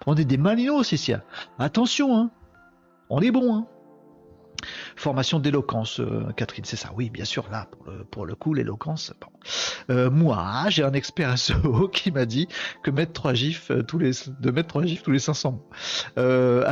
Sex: male